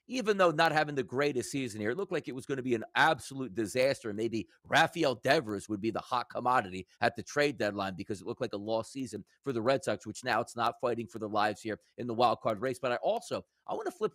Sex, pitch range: male, 125-195 Hz